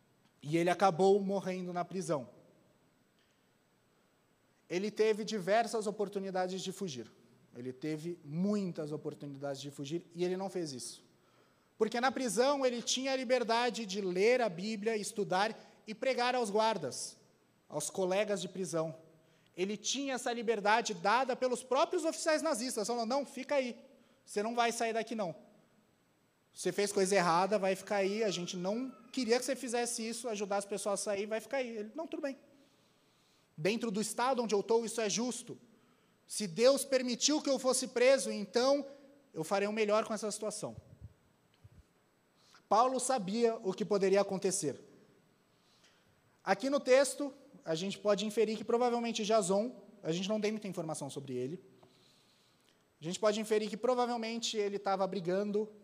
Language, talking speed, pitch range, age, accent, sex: Portuguese, 155 wpm, 190-240 Hz, 30-49, Brazilian, male